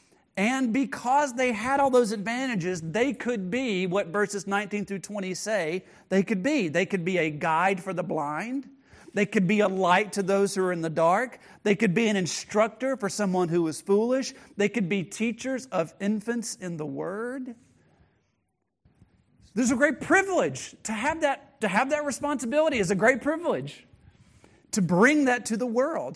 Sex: male